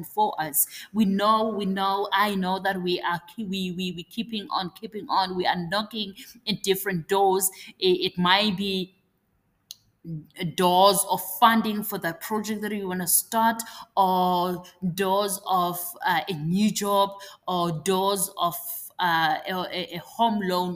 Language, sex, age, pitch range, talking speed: English, female, 20-39, 180-225 Hz, 155 wpm